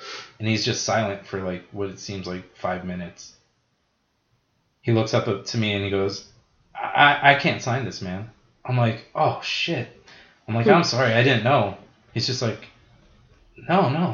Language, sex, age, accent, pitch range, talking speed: English, male, 20-39, American, 100-120 Hz, 185 wpm